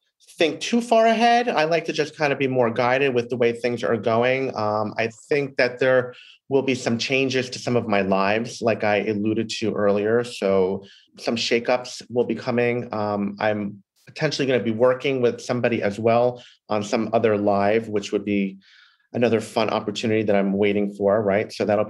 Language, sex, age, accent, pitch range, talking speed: English, male, 30-49, American, 105-125 Hz, 195 wpm